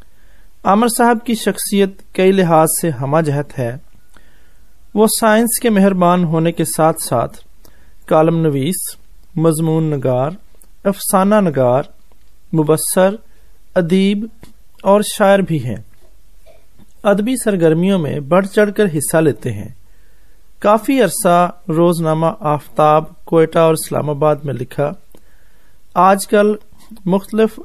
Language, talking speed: Hindi, 105 wpm